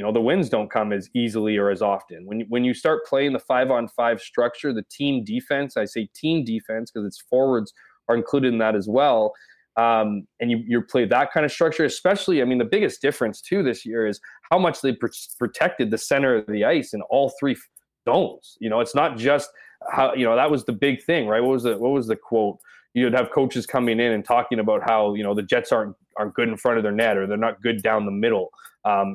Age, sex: 20-39, male